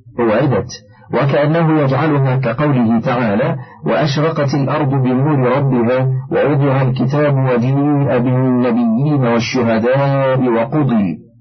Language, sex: Arabic, male